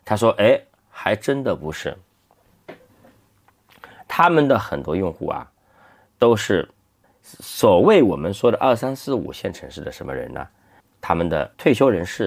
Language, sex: Chinese, male